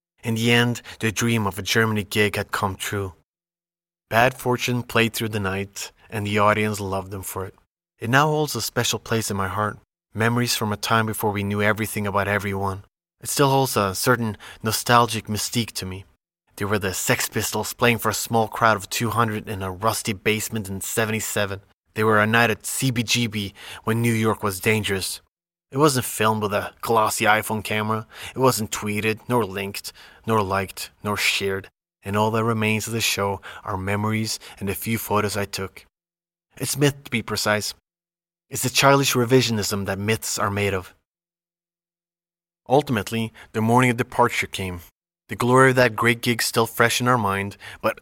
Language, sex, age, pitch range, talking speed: English, male, 20-39, 100-120 Hz, 180 wpm